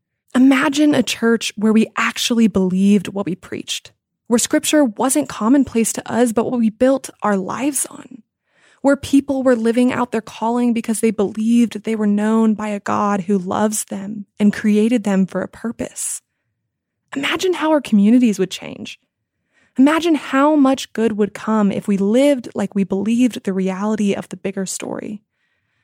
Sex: female